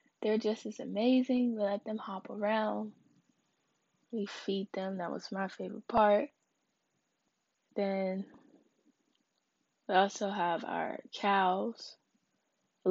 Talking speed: 110 wpm